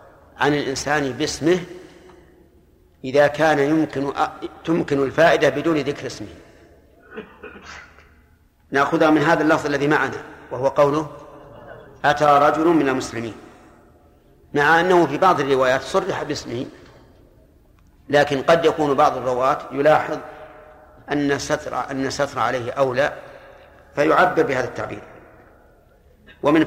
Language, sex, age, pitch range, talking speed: Arabic, male, 50-69, 130-155 Hz, 105 wpm